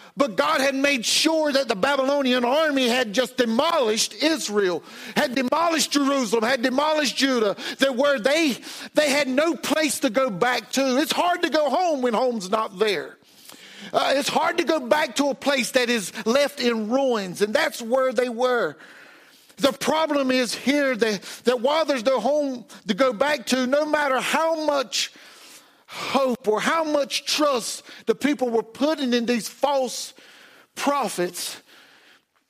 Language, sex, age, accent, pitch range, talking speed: English, male, 50-69, American, 220-285 Hz, 165 wpm